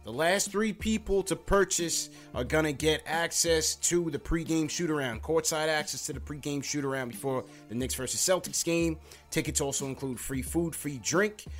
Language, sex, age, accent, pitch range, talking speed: English, male, 20-39, American, 125-150 Hz, 175 wpm